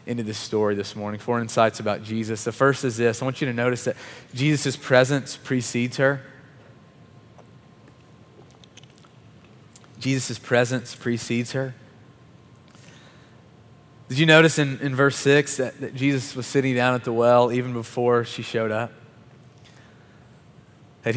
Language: English